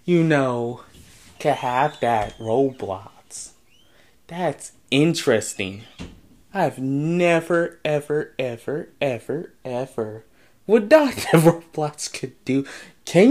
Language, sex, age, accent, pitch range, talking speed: English, male, 20-39, American, 135-205 Hz, 95 wpm